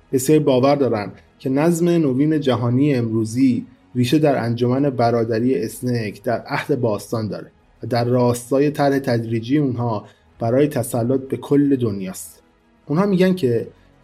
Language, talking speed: Persian, 135 wpm